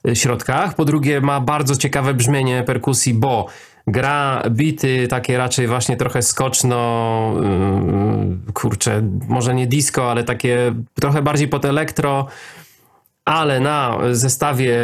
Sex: male